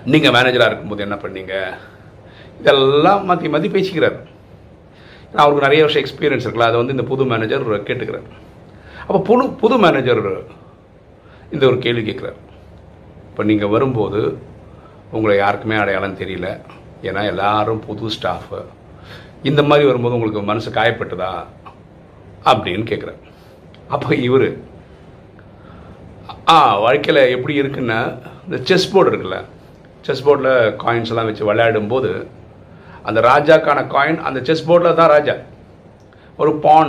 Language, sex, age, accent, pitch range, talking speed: Tamil, male, 50-69, native, 110-145 Hz, 115 wpm